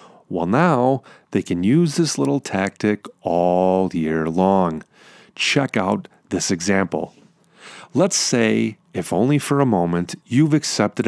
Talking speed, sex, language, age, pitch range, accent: 130 wpm, male, English, 40-59, 95-135 Hz, American